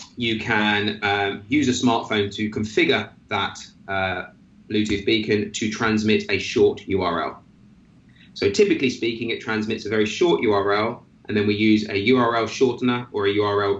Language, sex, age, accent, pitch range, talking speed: English, male, 20-39, British, 100-125 Hz, 155 wpm